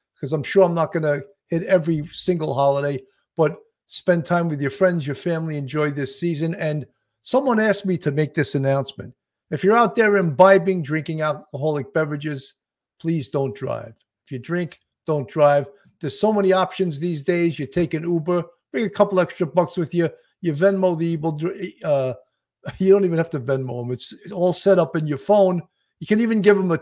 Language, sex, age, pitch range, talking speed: English, male, 50-69, 145-190 Hz, 200 wpm